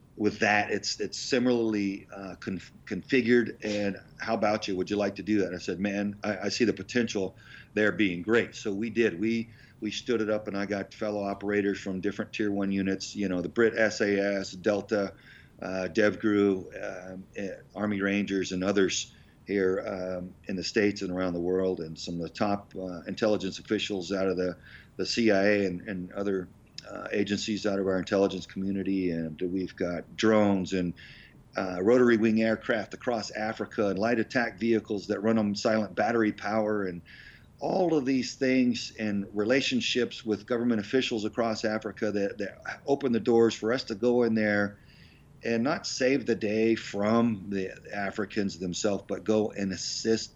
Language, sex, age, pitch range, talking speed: English, male, 40-59, 95-115 Hz, 180 wpm